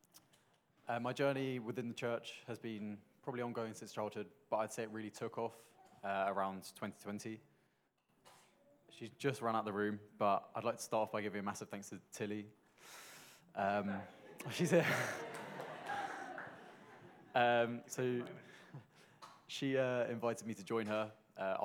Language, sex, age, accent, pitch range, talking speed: English, male, 20-39, British, 100-115 Hz, 150 wpm